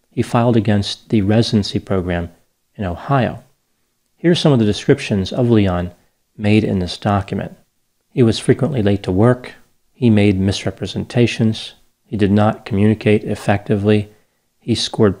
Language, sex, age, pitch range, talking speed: English, male, 40-59, 100-120 Hz, 140 wpm